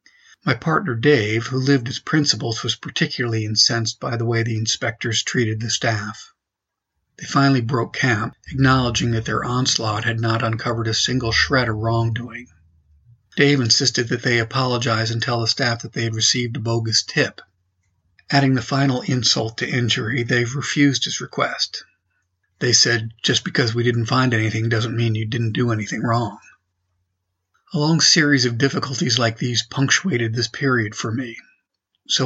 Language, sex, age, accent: English, male, 50-69, American